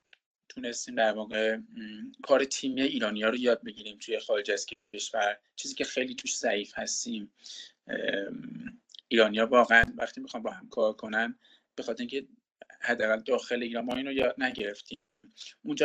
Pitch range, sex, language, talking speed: 115-155 Hz, male, Persian, 150 wpm